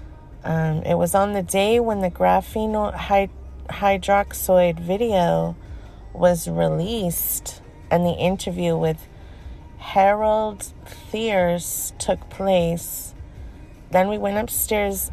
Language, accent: English, American